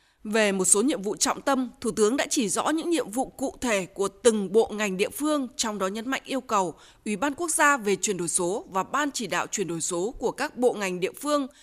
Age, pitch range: 20-39, 200-285 Hz